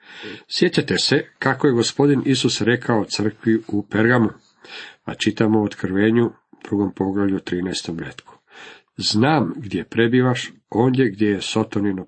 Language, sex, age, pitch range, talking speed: Croatian, male, 50-69, 105-130 Hz, 125 wpm